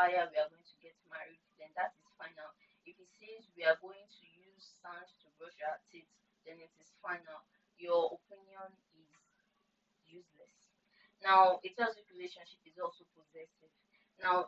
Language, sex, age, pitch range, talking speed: English, female, 20-39, 175-220 Hz, 165 wpm